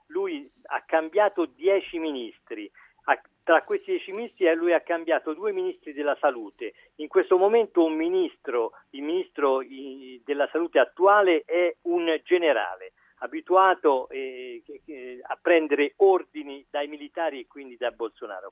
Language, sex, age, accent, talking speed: Italian, male, 50-69, native, 130 wpm